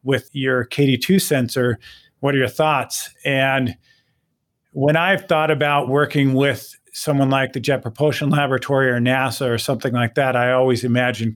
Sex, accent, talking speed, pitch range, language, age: male, American, 160 wpm, 125-150 Hz, English, 40-59